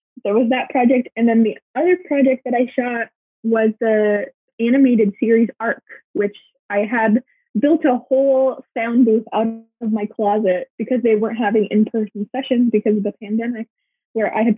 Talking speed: 175 wpm